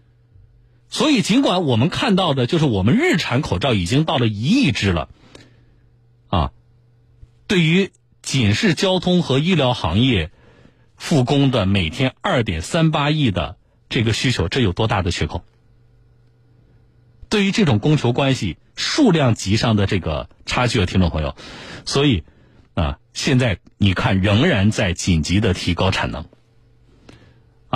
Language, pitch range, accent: Chinese, 100-130 Hz, native